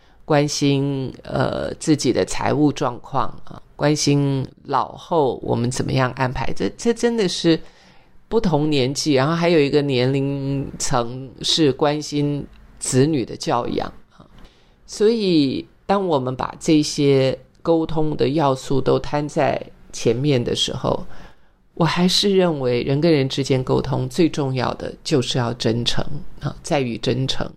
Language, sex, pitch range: Chinese, male, 130-155 Hz